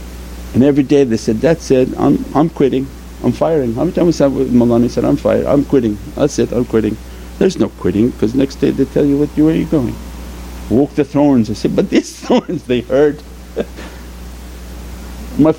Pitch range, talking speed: 100-170 Hz, 210 wpm